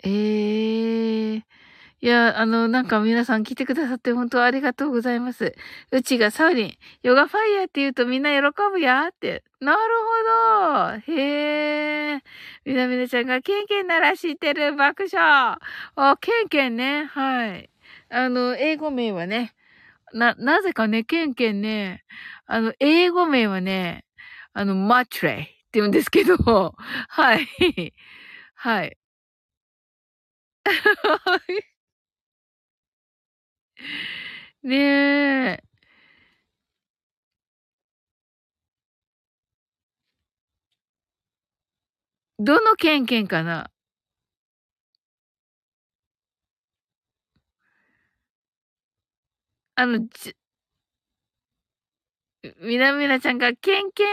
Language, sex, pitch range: Japanese, female, 235-340 Hz